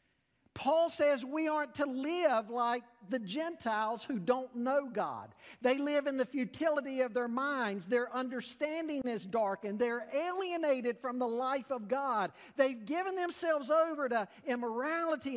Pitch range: 220-305 Hz